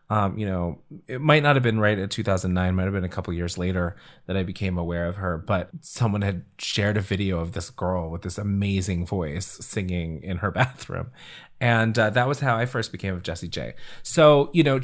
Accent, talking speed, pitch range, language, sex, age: American, 225 wpm, 95-130 Hz, English, male, 30-49